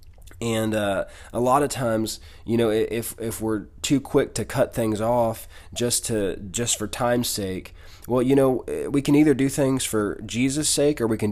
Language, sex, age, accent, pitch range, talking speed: English, male, 20-39, American, 95-115 Hz, 195 wpm